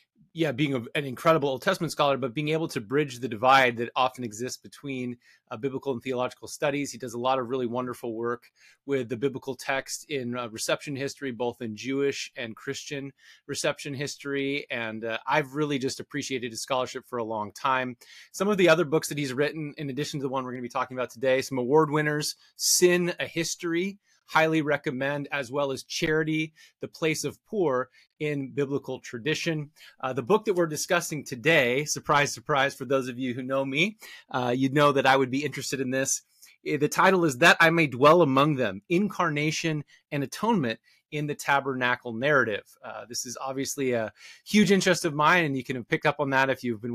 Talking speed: 200 wpm